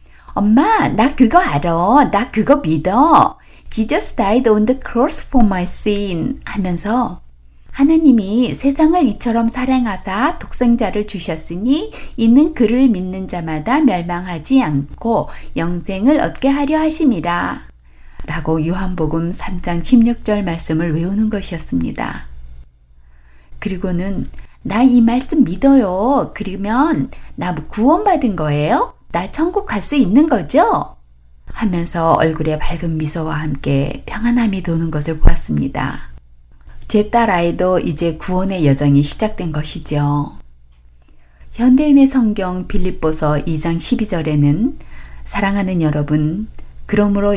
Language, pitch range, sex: Korean, 150-225 Hz, female